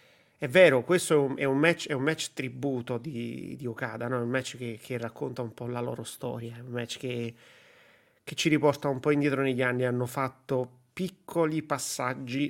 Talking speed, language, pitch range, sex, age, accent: 205 wpm, Italian, 120-140 Hz, male, 30-49, native